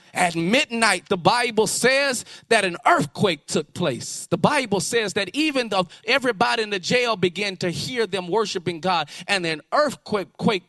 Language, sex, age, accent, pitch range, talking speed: English, male, 30-49, American, 145-210 Hz, 165 wpm